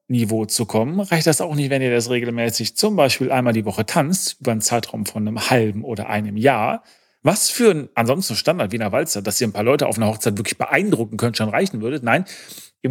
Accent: German